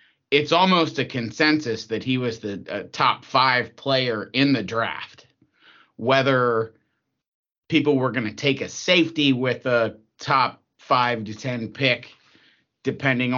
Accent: American